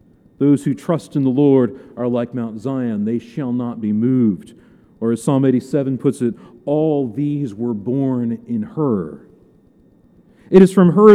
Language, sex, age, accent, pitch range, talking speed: English, male, 40-59, American, 140-195 Hz, 165 wpm